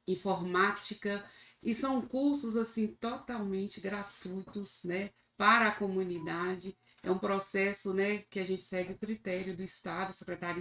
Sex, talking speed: female, 135 wpm